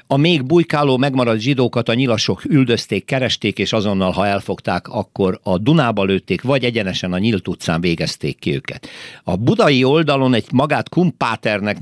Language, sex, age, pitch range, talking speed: Hungarian, male, 60-79, 95-130 Hz, 155 wpm